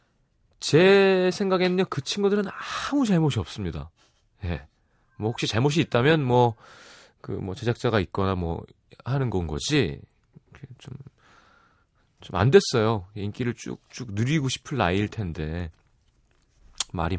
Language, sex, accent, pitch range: Korean, male, native, 95-145 Hz